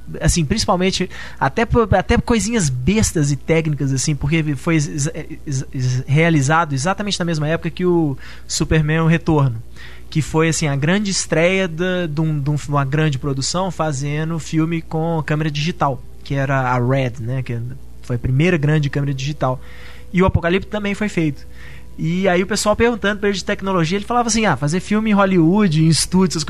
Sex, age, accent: male, 20-39, Brazilian